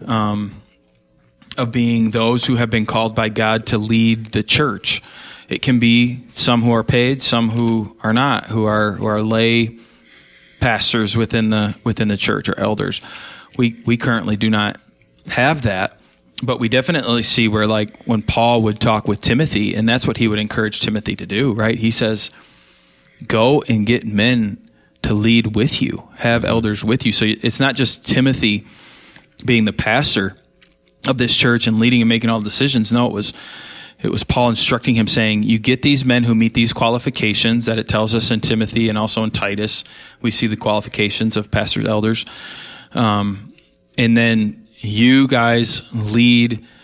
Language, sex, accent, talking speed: English, male, American, 180 wpm